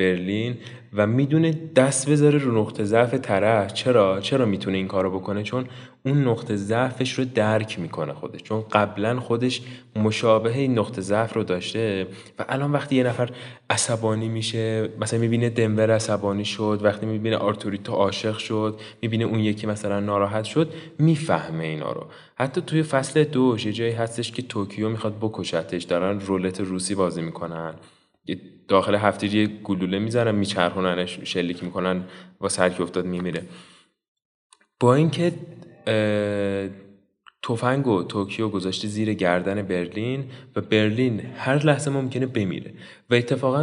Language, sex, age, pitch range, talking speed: Persian, male, 20-39, 100-125 Hz, 140 wpm